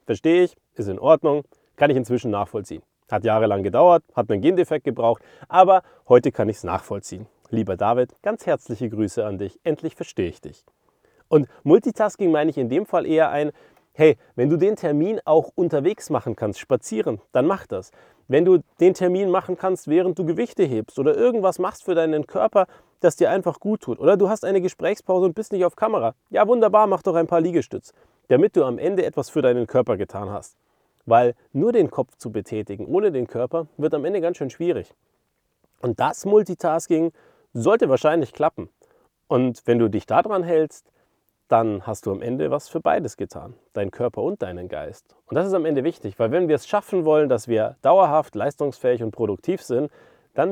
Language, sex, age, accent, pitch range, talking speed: German, male, 30-49, German, 115-185 Hz, 195 wpm